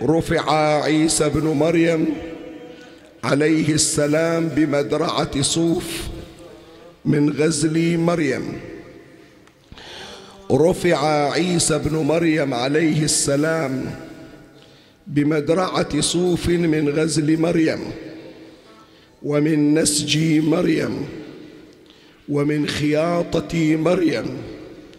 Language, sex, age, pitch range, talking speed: Arabic, male, 50-69, 145-165 Hz, 65 wpm